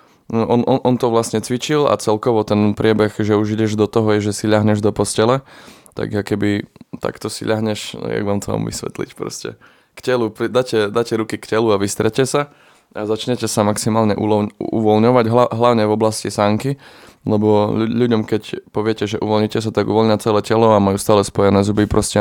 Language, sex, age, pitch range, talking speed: Slovak, male, 20-39, 105-115 Hz, 190 wpm